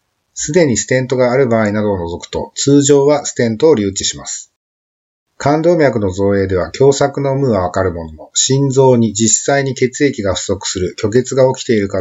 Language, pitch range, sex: Japanese, 95-130 Hz, male